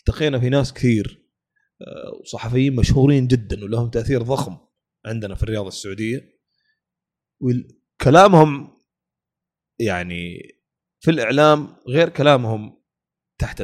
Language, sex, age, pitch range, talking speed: Arabic, male, 30-49, 120-160 Hz, 90 wpm